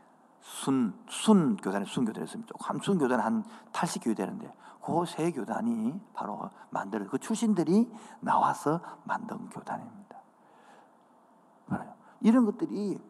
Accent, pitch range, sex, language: native, 145-220 Hz, male, Korean